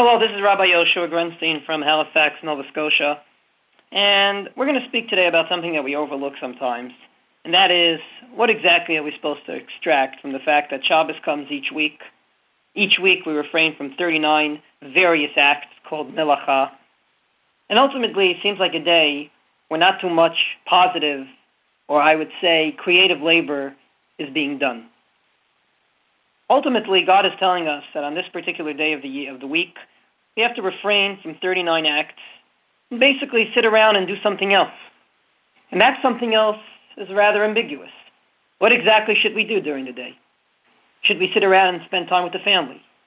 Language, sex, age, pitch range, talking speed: English, male, 40-59, 155-200 Hz, 175 wpm